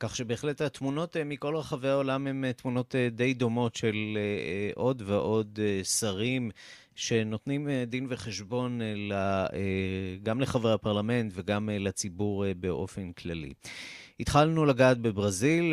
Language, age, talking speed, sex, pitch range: Hebrew, 30-49, 105 wpm, male, 100-130 Hz